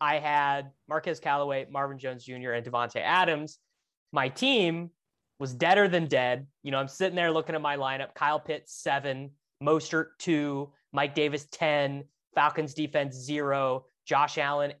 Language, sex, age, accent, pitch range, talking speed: English, male, 20-39, American, 130-160 Hz, 155 wpm